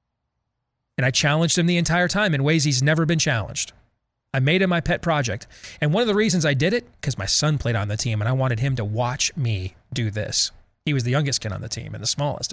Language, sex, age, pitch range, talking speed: English, male, 30-49, 130-195 Hz, 260 wpm